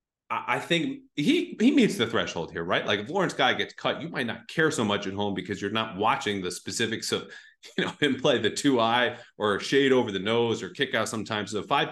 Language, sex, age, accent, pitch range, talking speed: English, male, 30-49, American, 95-120 Hz, 235 wpm